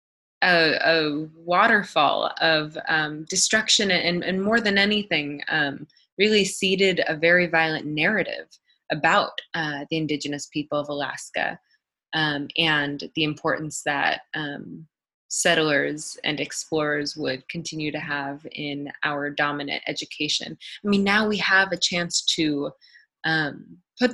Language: English